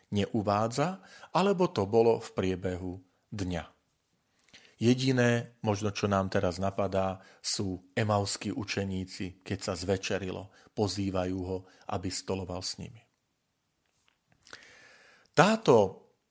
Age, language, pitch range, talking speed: 40-59, Slovak, 95-140 Hz, 95 wpm